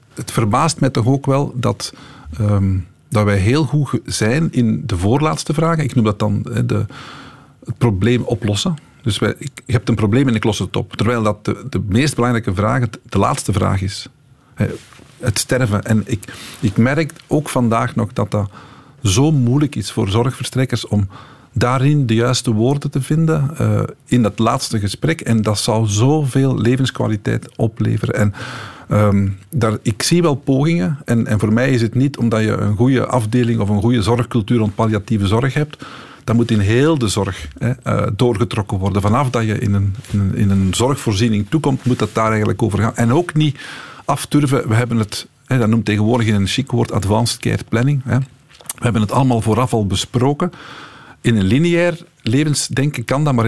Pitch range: 110-135 Hz